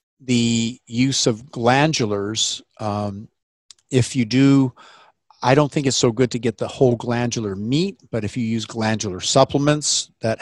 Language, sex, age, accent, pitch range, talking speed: English, male, 50-69, American, 115-135 Hz, 155 wpm